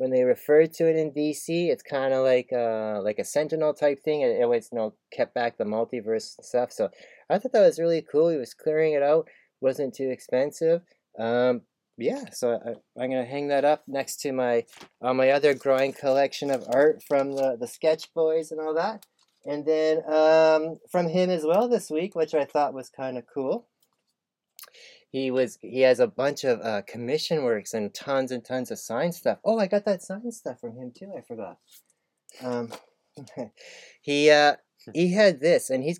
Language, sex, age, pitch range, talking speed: English, male, 20-39, 125-160 Hz, 205 wpm